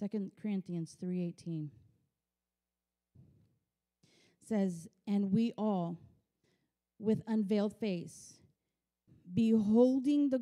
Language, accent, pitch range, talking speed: English, American, 170-220 Hz, 70 wpm